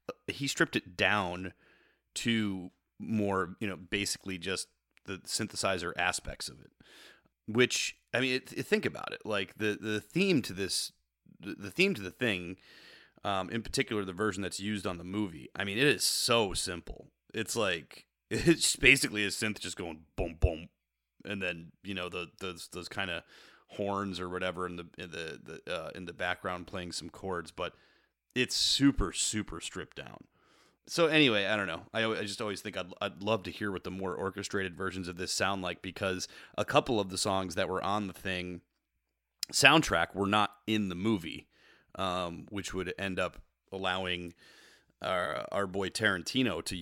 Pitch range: 90-105 Hz